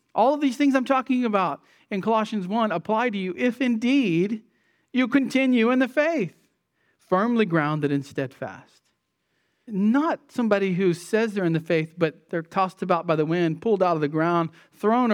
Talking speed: 180 wpm